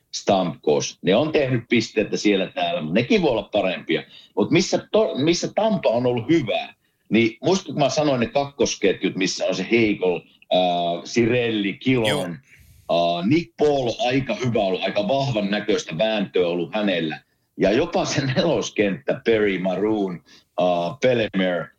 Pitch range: 95-130 Hz